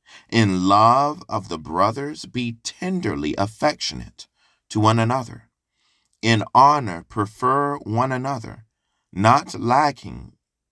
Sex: male